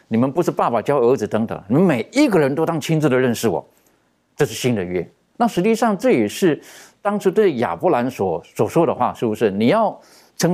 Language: Chinese